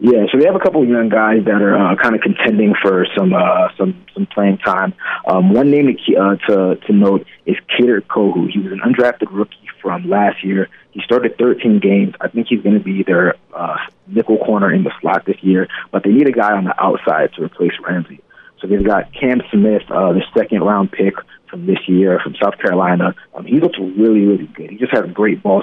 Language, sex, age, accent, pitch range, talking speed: English, male, 30-49, American, 100-115 Hz, 230 wpm